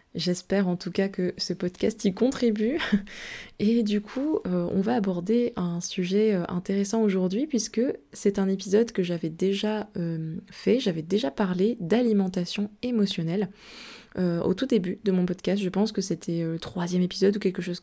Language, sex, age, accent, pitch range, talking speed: French, female, 20-39, French, 180-215 Hz, 170 wpm